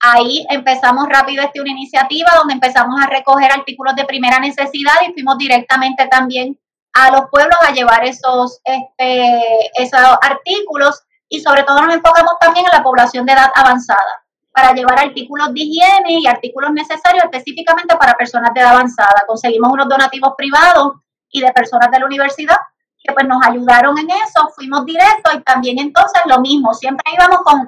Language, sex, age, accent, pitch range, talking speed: Spanish, female, 30-49, American, 255-300 Hz, 170 wpm